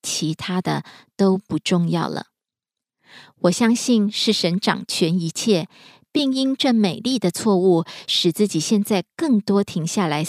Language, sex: Korean, female